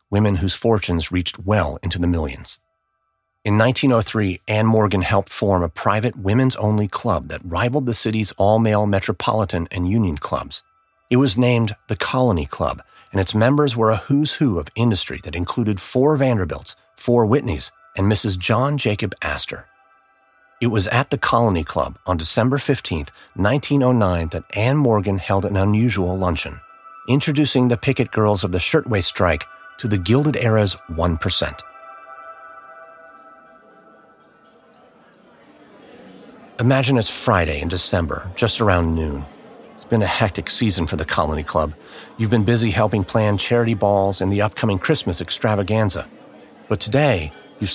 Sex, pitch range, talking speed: male, 95-130 Hz, 145 wpm